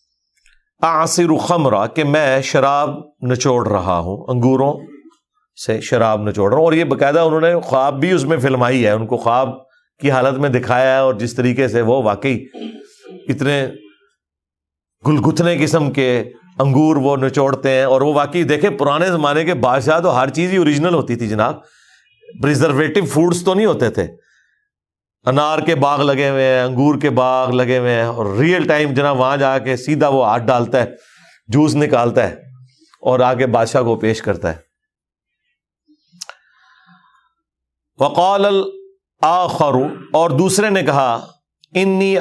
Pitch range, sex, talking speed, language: 130-170 Hz, male, 155 wpm, Urdu